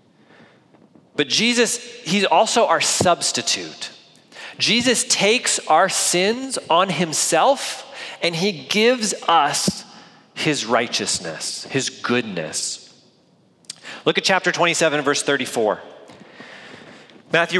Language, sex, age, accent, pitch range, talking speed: English, male, 40-59, American, 150-195 Hz, 90 wpm